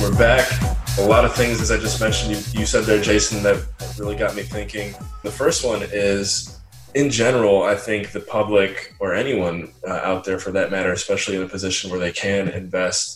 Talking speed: 210 wpm